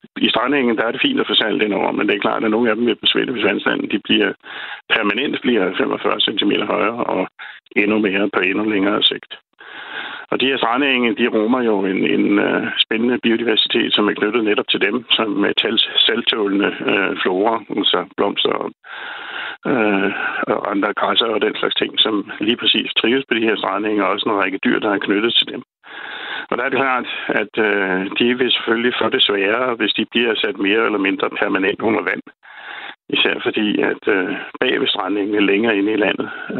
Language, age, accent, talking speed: Danish, 60-79, native, 190 wpm